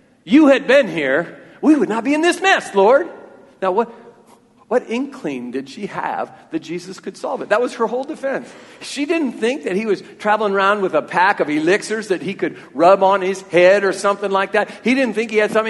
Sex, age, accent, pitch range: male, 50-69, American, 190-240 Hz